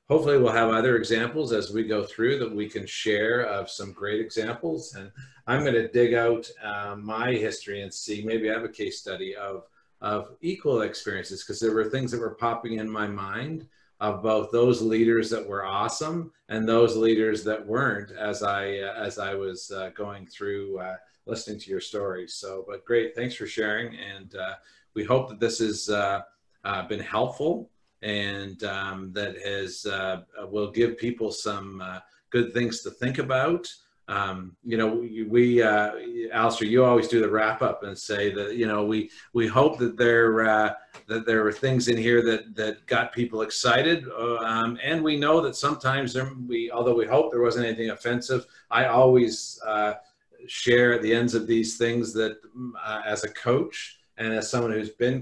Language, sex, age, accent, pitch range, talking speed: English, male, 50-69, American, 105-120 Hz, 185 wpm